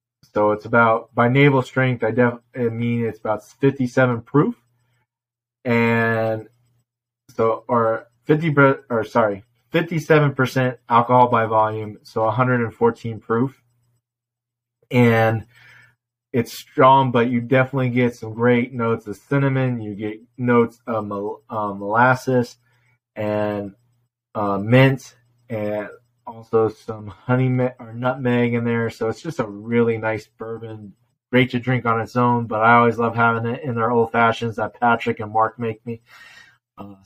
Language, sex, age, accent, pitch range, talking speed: English, male, 20-39, American, 110-125 Hz, 140 wpm